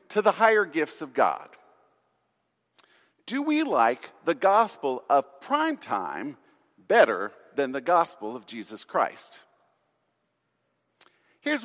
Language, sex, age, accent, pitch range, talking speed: English, male, 50-69, American, 165-270 Hz, 110 wpm